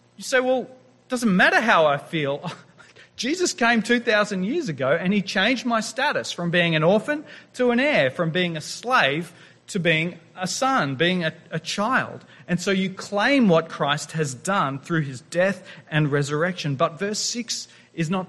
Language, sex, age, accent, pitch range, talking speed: English, male, 30-49, Australian, 165-225 Hz, 185 wpm